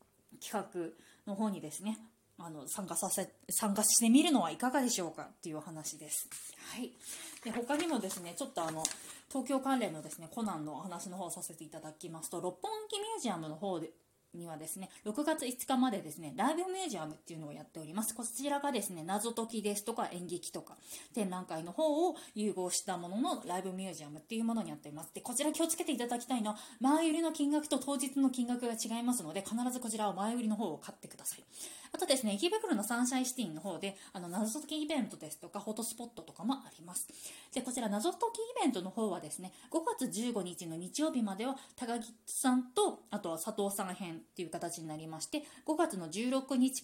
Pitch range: 175-260 Hz